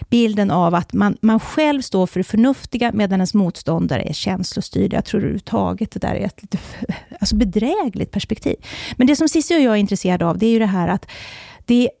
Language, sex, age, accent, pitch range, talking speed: Swedish, female, 30-49, native, 195-245 Hz, 215 wpm